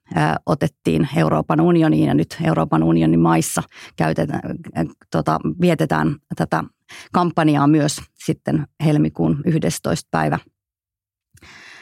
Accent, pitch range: native, 155-175 Hz